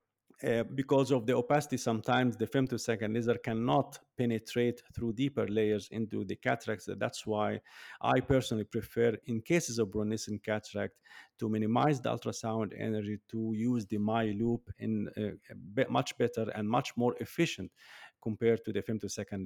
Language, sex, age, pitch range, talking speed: English, male, 50-69, 115-150 Hz, 155 wpm